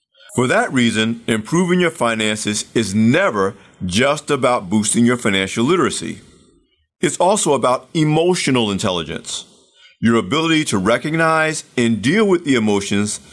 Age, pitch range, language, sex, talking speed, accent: 50-69, 110-165 Hz, English, male, 125 wpm, American